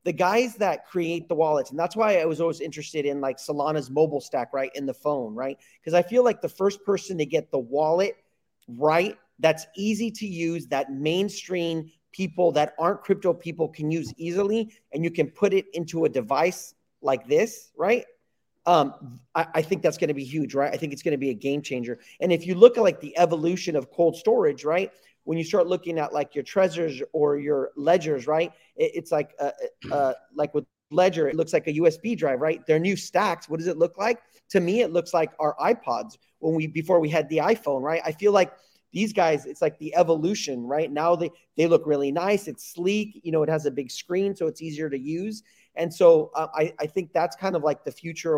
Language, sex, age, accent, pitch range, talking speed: English, male, 30-49, American, 150-190 Hz, 225 wpm